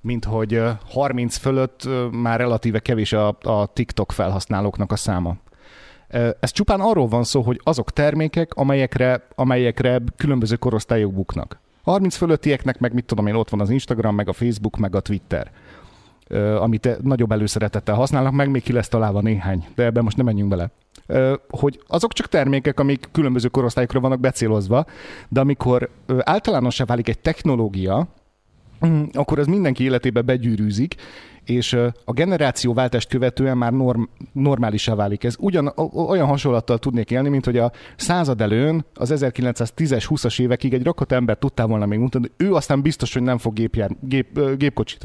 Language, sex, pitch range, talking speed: Hungarian, male, 110-140 Hz, 155 wpm